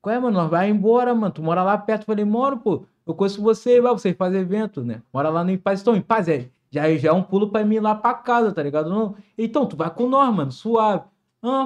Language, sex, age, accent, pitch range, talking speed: Portuguese, male, 20-39, Brazilian, 145-220 Hz, 260 wpm